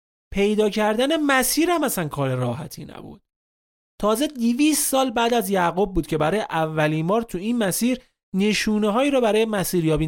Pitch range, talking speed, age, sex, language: 145-215 Hz, 160 wpm, 30-49, male, Persian